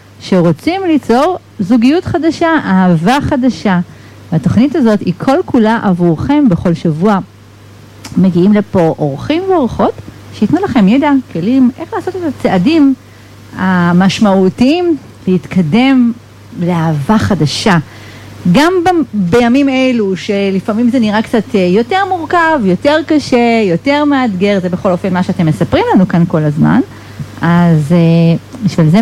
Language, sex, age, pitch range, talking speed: Hebrew, female, 40-59, 175-250 Hz, 120 wpm